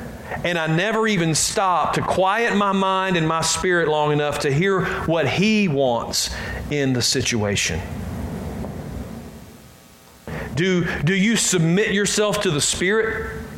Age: 40-59